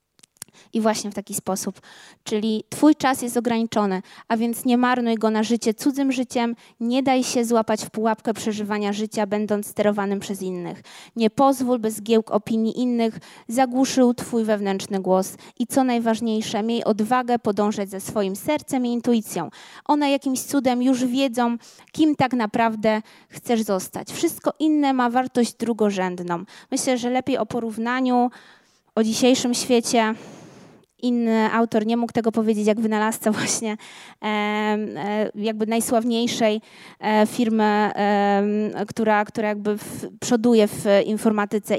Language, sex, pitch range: Polish, female, 210-240 Hz